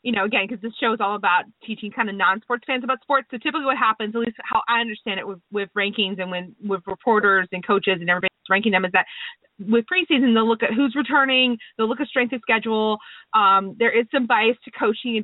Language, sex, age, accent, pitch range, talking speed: English, female, 30-49, American, 190-235 Hz, 245 wpm